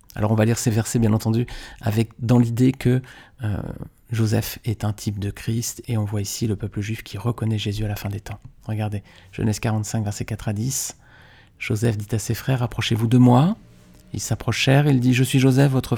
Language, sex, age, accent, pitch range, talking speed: French, male, 40-59, French, 105-130 Hz, 230 wpm